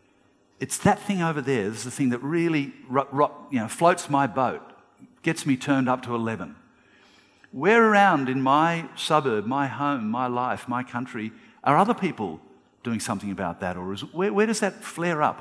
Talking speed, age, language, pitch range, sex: 195 wpm, 50-69, English, 125-170 Hz, male